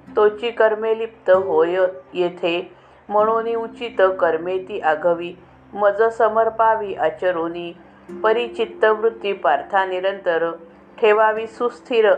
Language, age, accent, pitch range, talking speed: Marathi, 50-69, native, 175-225 Hz, 75 wpm